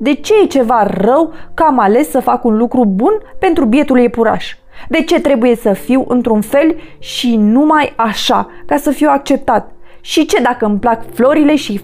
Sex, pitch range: female, 215-290 Hz